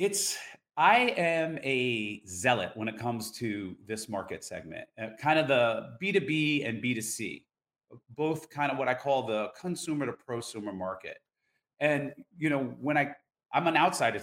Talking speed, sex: 160 wpm, male